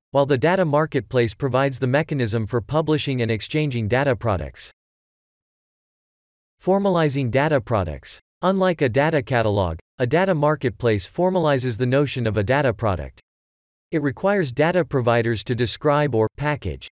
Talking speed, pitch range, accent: 135 wpm, 110-150 Hz, American